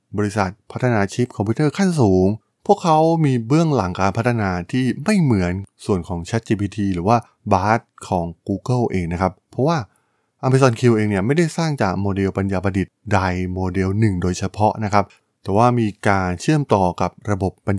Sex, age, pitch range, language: male, 20-39, 95-120 Hz, Thai